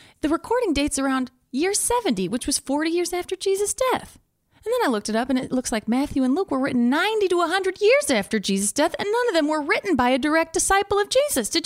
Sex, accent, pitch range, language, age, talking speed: female, American, 235-320 Hz, English, 30-49, 245 wpm